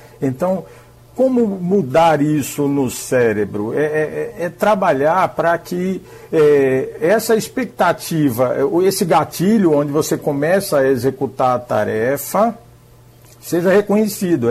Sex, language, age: male, Portuguese, 60-79